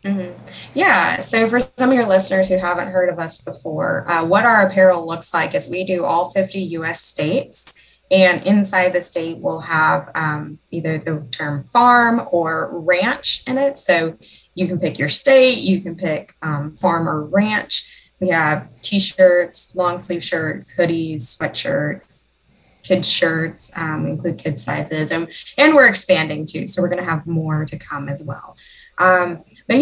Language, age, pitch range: English, 20-39, 160-190 Hz